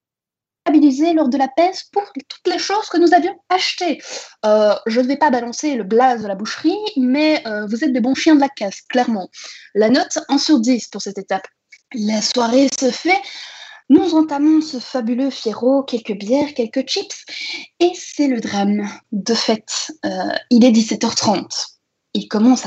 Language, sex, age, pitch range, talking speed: French, female, 20-39, 230-315 Hz, 175 wpm